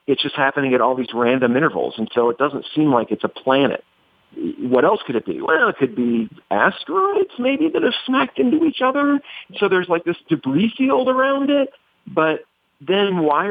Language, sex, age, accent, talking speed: English, male, 50-69, American, 200 wpm